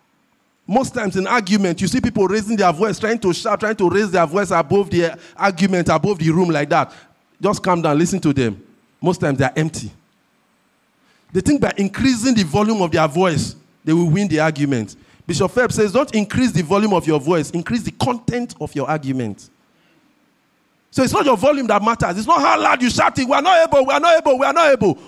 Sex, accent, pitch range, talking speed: male, Nigerian, 160-225 Hz, 225 wpm